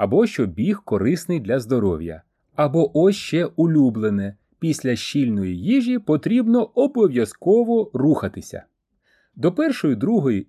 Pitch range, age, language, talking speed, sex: 120-195 Hz, 30-49, Ukrainian, 115 wpm, male